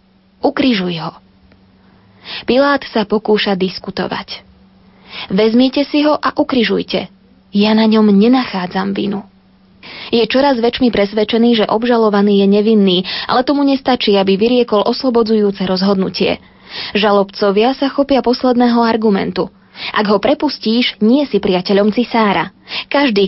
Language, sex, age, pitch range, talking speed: Slovak, female, 20-39, 195-240 Hz, 115 wpm